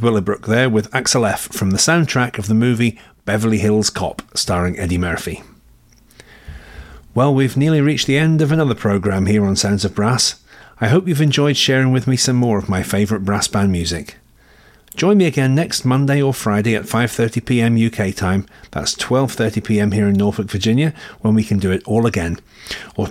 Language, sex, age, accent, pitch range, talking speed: English, male, 40-59, British, 100-135 Hz, 195 wpm